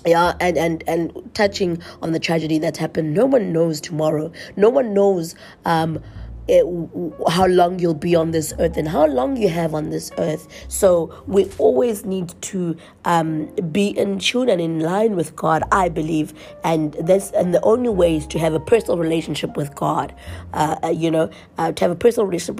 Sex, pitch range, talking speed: female, 160-205 Hz, 190 wpm